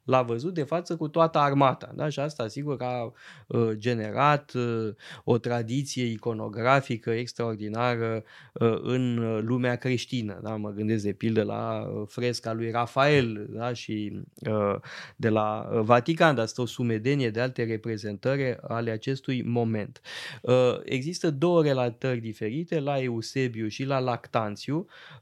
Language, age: Romanian, 20-39